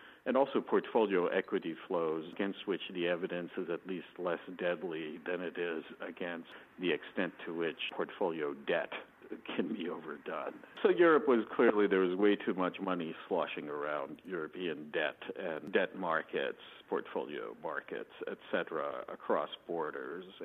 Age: 60-79